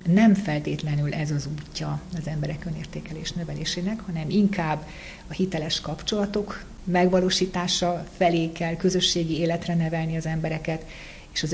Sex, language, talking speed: female, Hungarian, 125 wpm